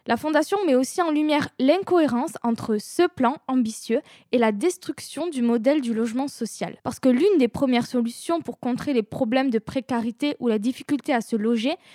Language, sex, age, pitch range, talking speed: German, female, 20-39, 230-290 Hz, 185 wpm